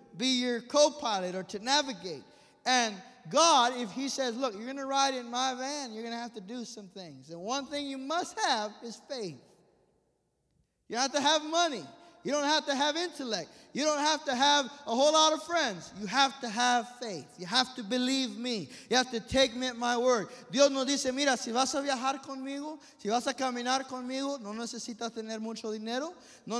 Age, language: 20-39, English